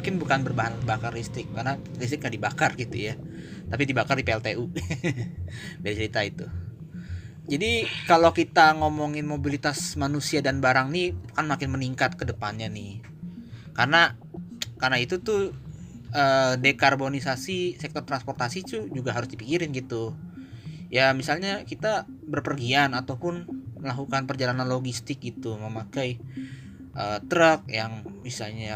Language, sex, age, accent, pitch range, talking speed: Indonesian, male, 20-39, native, 115-150 Hz, 120 wpm